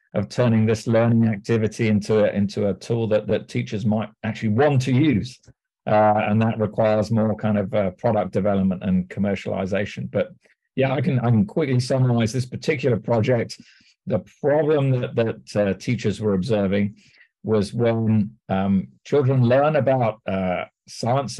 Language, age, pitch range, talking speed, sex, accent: English, 50-69, 105-125 Hz, 160 wpm, male, British